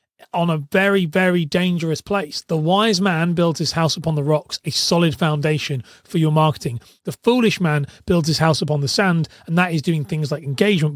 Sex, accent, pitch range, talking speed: male, British, 155-190 Hz, 205 wpm